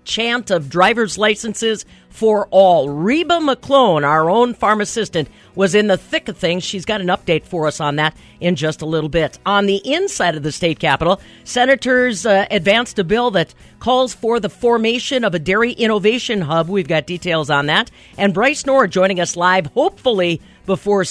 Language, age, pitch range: English, 50-69, 170-235 Hz